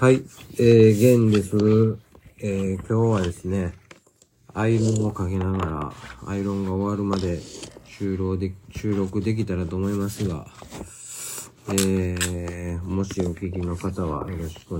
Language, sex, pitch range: Japanese, male, 90-110 Hz